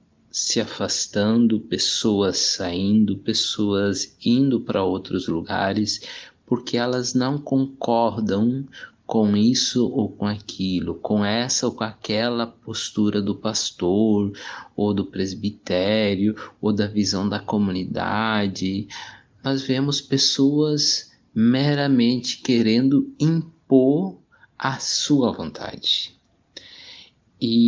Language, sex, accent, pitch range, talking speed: Portuguese, male, Brazilian, 105-135 Hz, 95 wpm